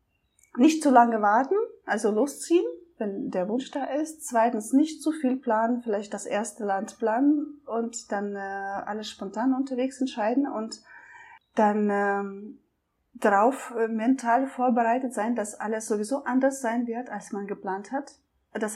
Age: 30-49